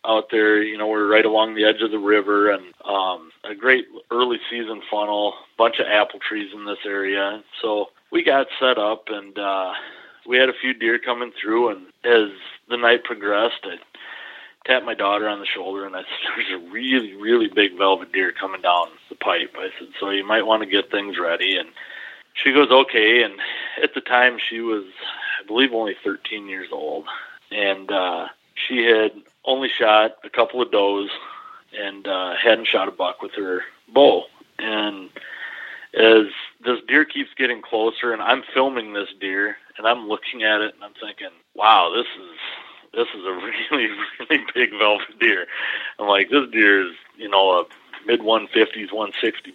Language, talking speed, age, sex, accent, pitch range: English, 185 wpm, 30-49, male, American, 105-120 Hz